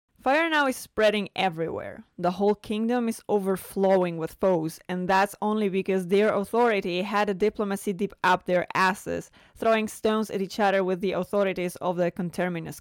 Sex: female